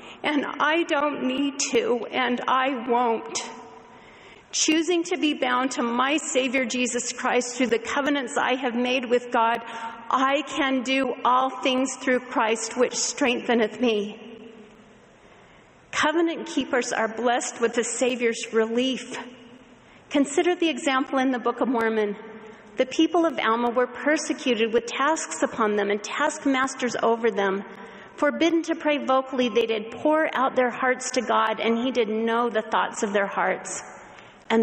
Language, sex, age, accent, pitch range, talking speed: English, female, 40-59, American, 220-270 Hz, 150 wpm